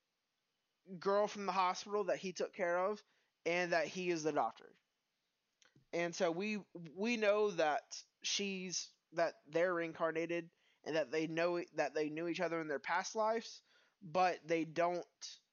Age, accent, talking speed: 20-39, American, 160 wpm